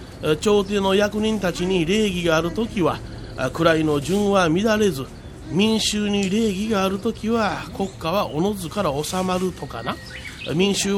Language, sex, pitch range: Japanese, male, 160-205 Hz